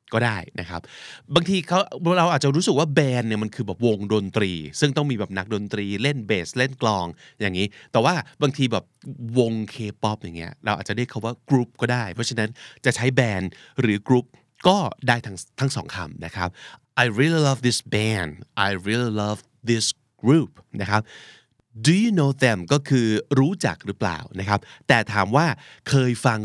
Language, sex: Thai, male